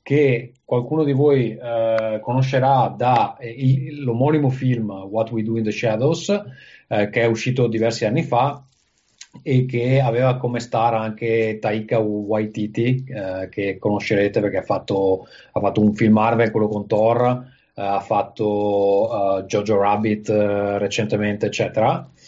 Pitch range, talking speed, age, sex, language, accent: 105-130 Hz, 130 wpm, 30-49, male, Italian, native